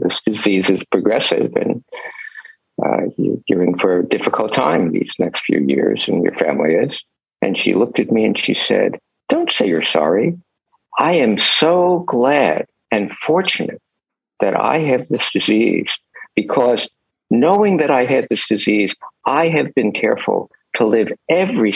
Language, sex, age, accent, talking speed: English, male, 60-79, American, 155 wpm